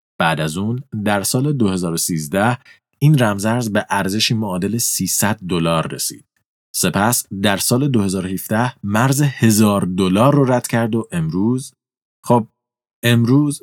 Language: Persian